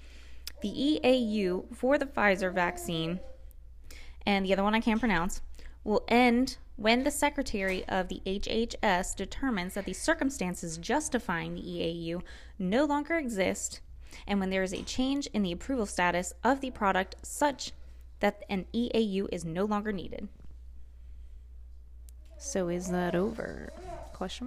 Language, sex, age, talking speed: English, female, 20-39, 140 wpm